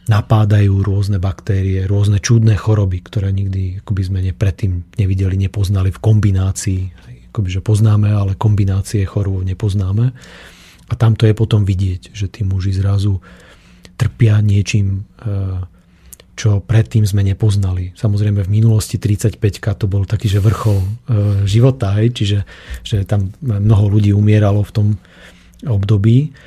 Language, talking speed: Slovak, 125 wpm